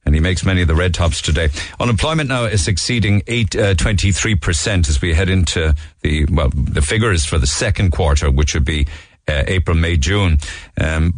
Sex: male